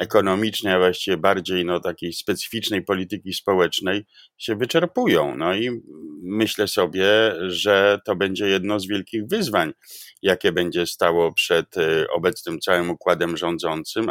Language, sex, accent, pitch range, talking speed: Polish, male, native, 100-120 Hz, 130 wpm